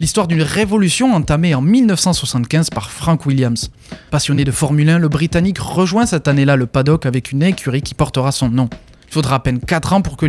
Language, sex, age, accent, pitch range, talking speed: French, male, 20-39, French, 135-175 Hz, 205 wpm